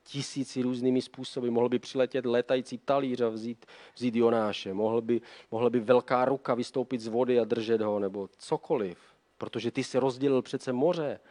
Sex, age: male, 40-59